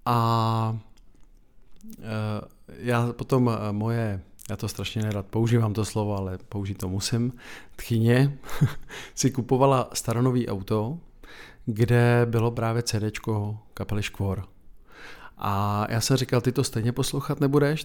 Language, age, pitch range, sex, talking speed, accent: Czech, 50-69, 110-130 Hz, male, 120 wpm, native